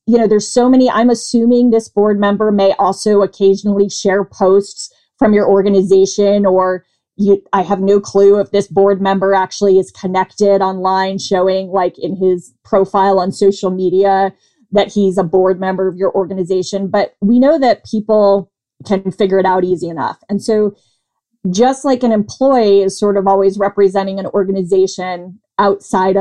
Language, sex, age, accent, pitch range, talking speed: English, female, 20-39, American, 185-210 Hz, 165 wpm